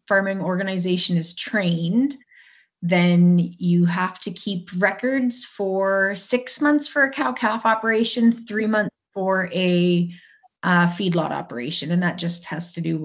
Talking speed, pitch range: 145 wpm, 170-220 Hz